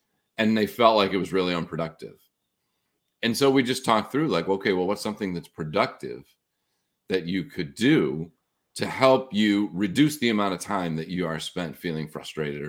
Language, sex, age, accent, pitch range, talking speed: English, male, 40-59, American, 85-115 Hz, 185 wpm